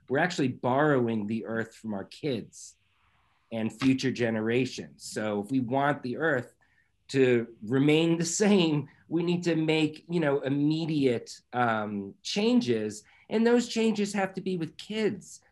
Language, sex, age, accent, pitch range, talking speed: English, male, 40-59, American, 110-150 Hz, 145 wpm